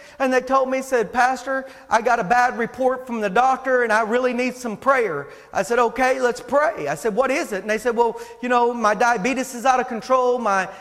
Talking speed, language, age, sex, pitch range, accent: 240 wpm, English, 40-59, male, 255-395 Hz, American